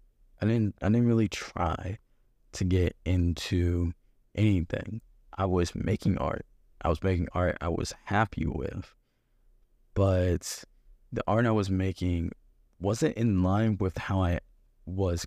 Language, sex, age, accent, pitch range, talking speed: English, male, 20-39, American, 85-100 Hz, 140 wpm